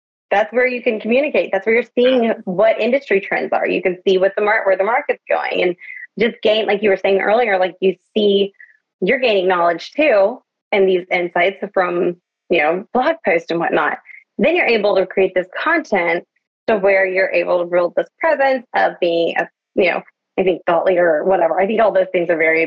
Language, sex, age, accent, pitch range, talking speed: English, female, 20-39, American, 180-220 Hz, 215 wpm